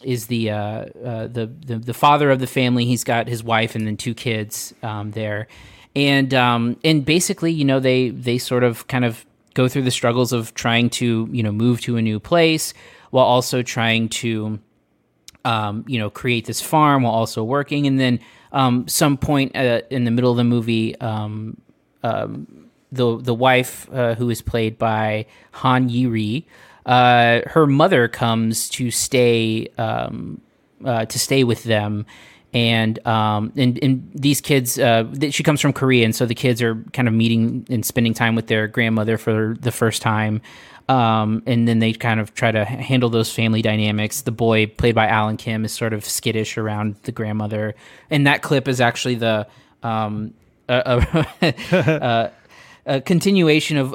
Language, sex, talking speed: English, male, 185 wpm